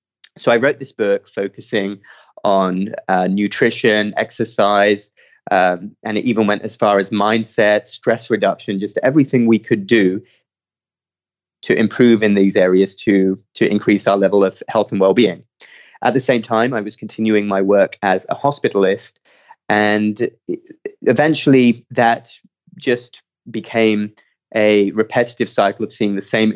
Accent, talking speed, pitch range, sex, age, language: British, 145 wpm, 100-120 Hz, male, 20-39, English